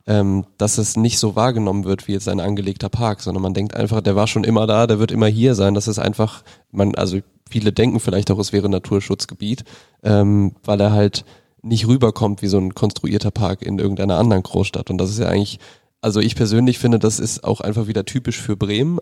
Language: German